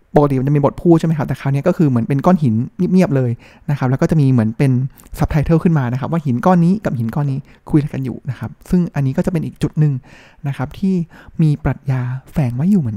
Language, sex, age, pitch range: Thai, male, 20-39, 130-165 Hz